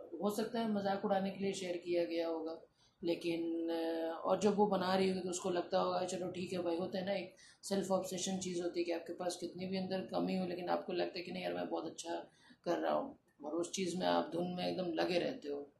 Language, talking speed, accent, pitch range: Hindi, 255 wpm, native, 170-200 Hz